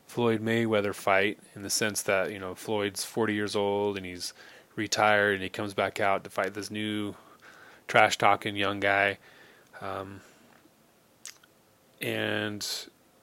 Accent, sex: American, male